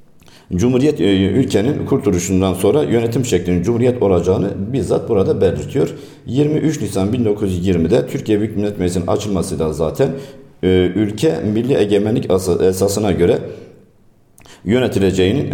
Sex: male